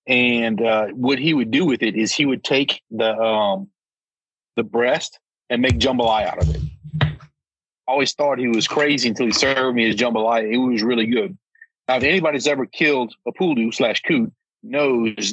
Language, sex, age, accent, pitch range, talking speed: English, male, 40-59, American, 115-150 Hz, 185 wpm